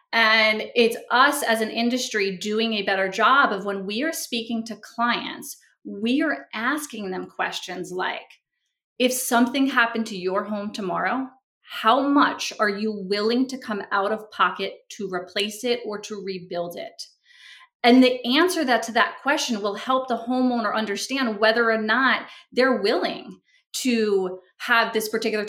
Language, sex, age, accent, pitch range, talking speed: English, female, 20-39, American, 205-255 Hz, 160 wpm